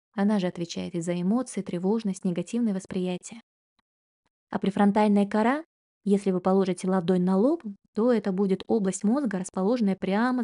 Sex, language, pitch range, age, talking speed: female, Russian, 190-220 Hz, 20-39, 140 wpm